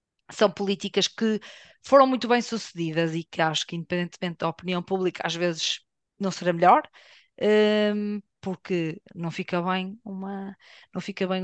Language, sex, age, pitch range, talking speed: Portuguese, female, 20-39, 175-200 Hz, 145 wpm